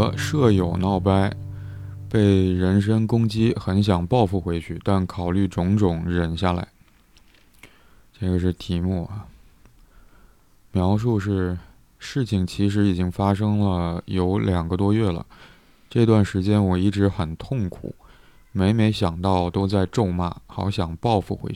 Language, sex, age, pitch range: Chinese, male, 20-39, 90-105 Hz